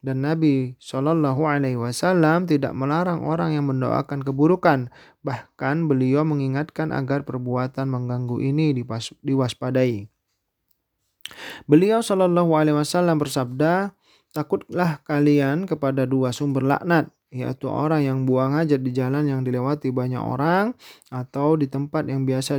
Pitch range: 130-155 Hz